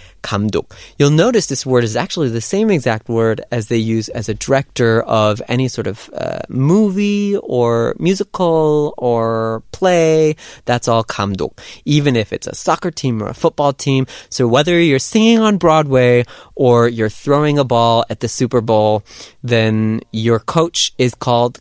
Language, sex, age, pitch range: Korean, male, 20-39, 115-160 Hz